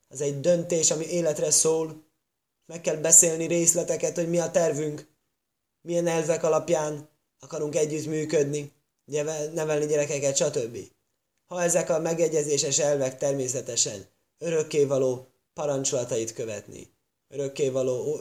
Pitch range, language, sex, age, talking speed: 120-160 Hz, Hungarian, male, 20-39, 110 wpm